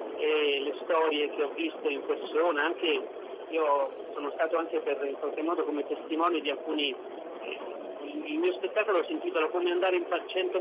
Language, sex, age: Italian, male, 40-59